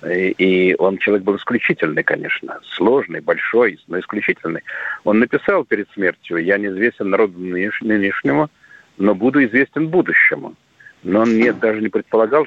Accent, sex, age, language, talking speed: native, male, 50-69, Russian, 130 wpm